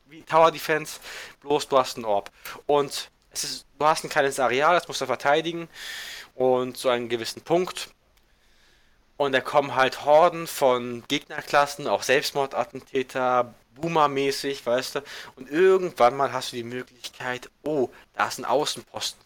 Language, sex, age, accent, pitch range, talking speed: German, male, 20-39, German, 120-140 Hz, 155 wpm